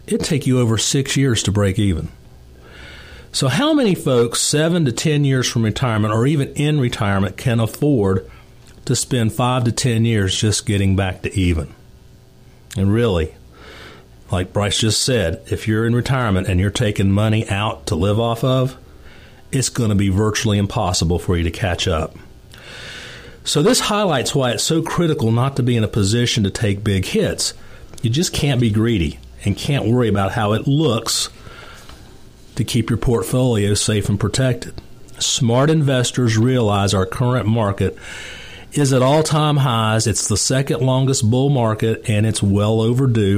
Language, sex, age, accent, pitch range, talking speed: English, male, 40-59, American, 100-130 Hz, 170 wpm